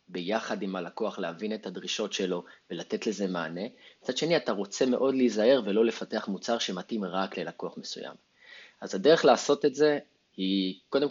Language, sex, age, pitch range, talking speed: English, male, 30-49, 95-140 Hz, 160 wpm